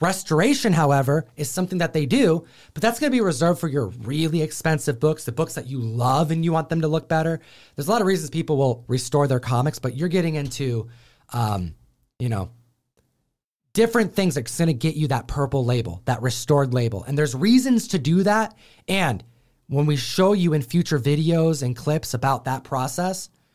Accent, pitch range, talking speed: American, 120-155 Hz, 195 wpm